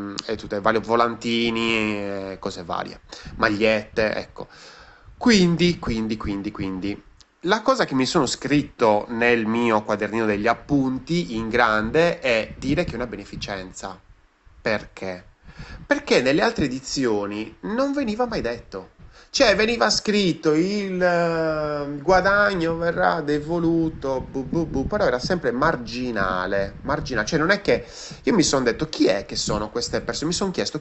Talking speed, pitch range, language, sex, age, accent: 140 wpm, 100-155 Hz, Italian, male, 30-49, native